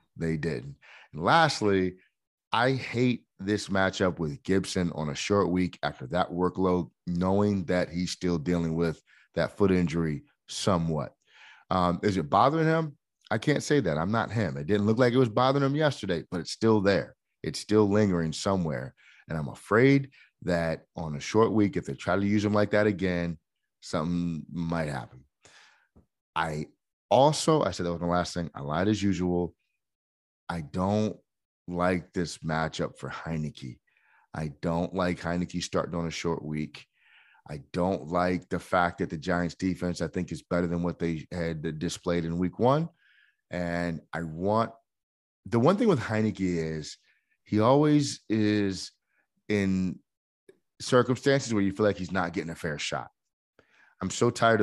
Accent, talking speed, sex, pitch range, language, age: American, 165 wpm, male, 85-105 Hz, English, 30-49